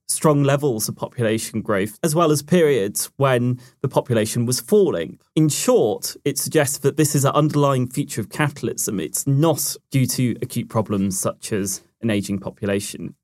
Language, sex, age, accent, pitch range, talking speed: English, male, 30-49, British, 120-150 Hz, 170 wpm